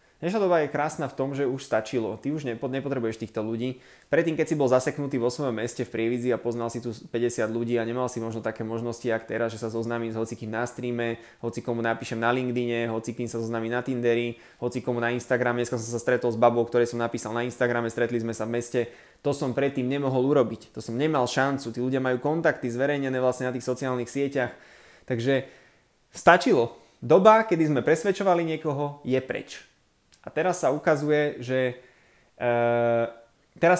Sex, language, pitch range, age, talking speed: male, Slovak, 120-140 Hz, 20-39, 190 wpm